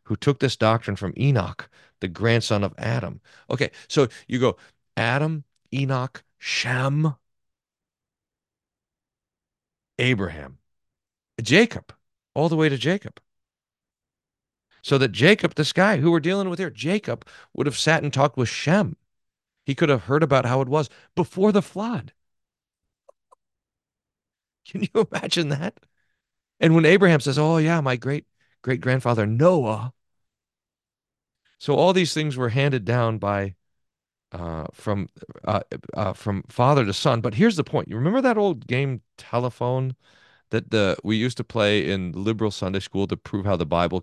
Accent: American